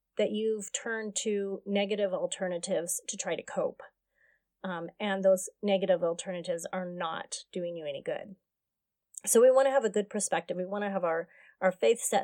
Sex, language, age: female, English, 30-49